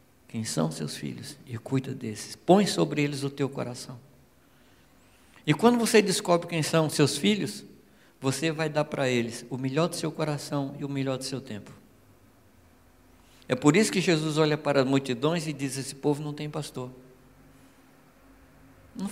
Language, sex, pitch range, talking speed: Portuguese, male, 120-155 Hz, 170 wpm